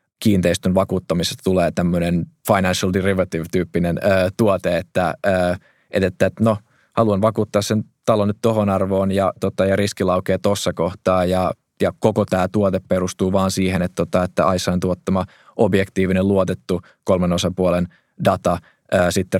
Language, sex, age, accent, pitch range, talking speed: Finnish, male, 20-39, native, 90-100 Hz, 145 wpm